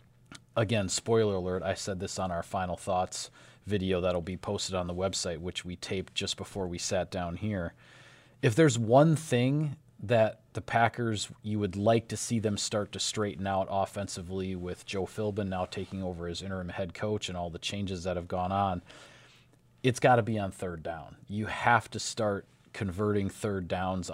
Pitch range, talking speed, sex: 95-115 Hz, 190 wpm, male